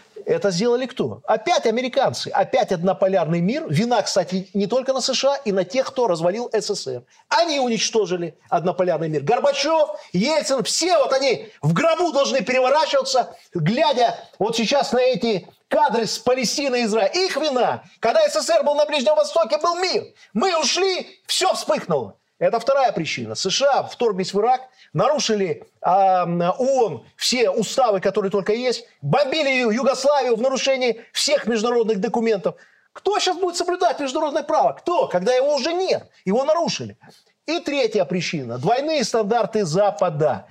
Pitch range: 195-280 Hz